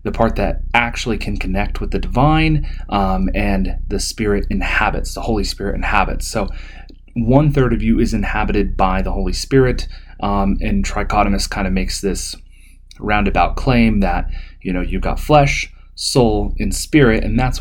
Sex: male